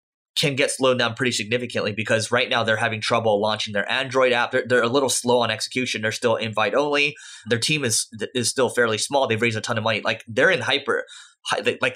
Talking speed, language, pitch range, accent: 225 wpm, English, 110-130 Hz, American